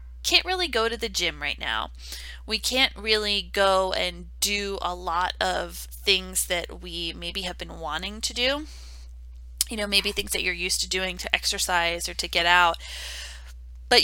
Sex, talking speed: female, 180 wpm